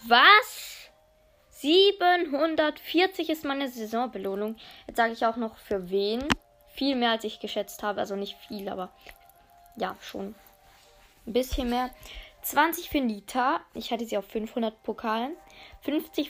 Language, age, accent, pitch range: German, 20-39, German, 210-265 Hz